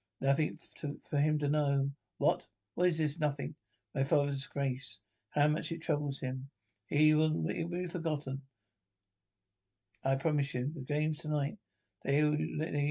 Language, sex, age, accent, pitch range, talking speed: English, male, 60-79, British, 135-160 Hz, 135 wpm